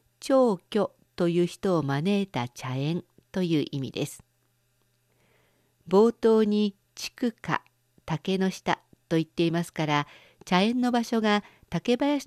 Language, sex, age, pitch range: Japanese, female, 50-69, 135-210 Hz